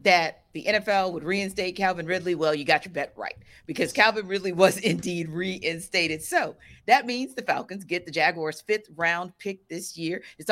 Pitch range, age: 155-195 Hz, 40-59